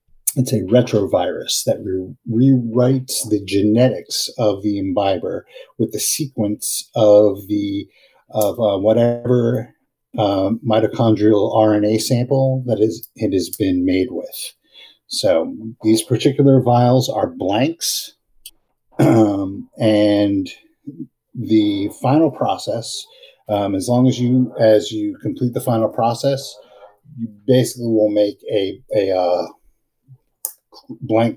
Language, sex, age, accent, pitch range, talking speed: English, male, 50-69, American, 105-140 Hz, 115 wpm